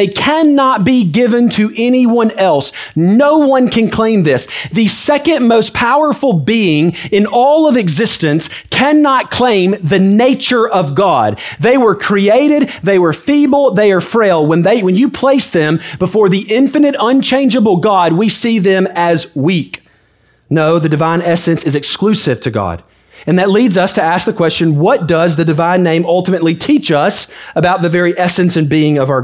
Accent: American